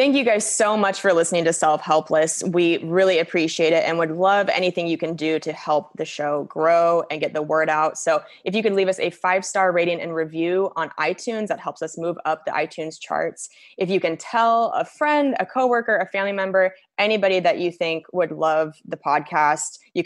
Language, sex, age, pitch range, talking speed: English, female, 20-39, 160-190 Hz, 215 wpm